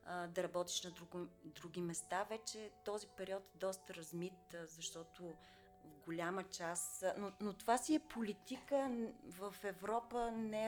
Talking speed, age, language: 135 wpm, 30-49, Bulgarian